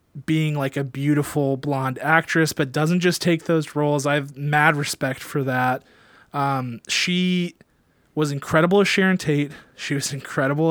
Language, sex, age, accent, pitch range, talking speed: English, male, 20-39, American, 130-160 Hz, 155 wpm